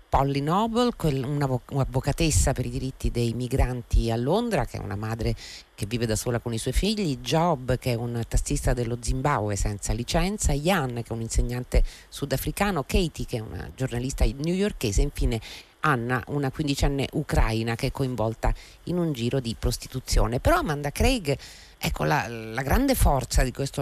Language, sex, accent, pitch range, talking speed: Italian, female, native, 110-145 Hz, 165 wpm